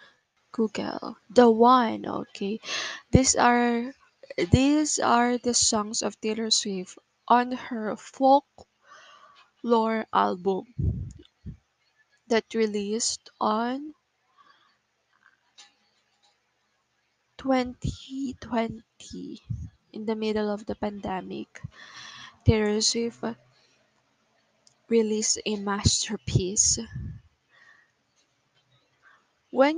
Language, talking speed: Filipino, 65 wpm